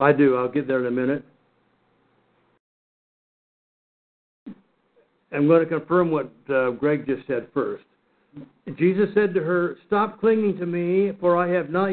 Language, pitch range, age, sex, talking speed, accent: English, 150-200 Hz, 60-79, male, 150 wpm, American